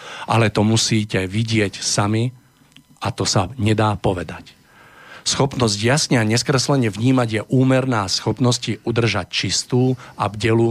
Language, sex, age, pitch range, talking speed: Slovak, male, 50-69, 105-125 Hz, 125 wpm